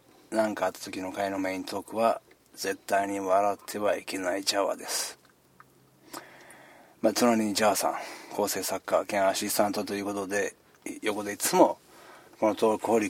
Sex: male